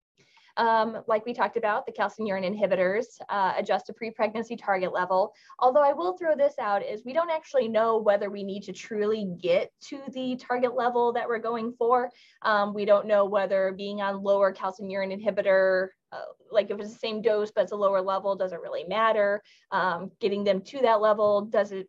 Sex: female